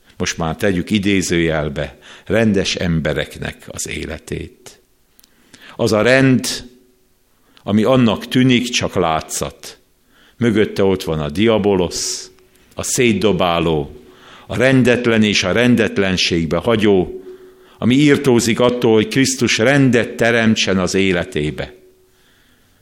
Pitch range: 85-120 Hz